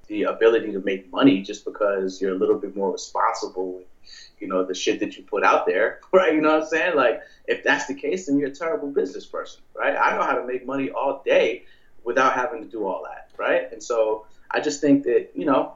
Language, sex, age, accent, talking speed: English, male, 30-49, American, 235 wpm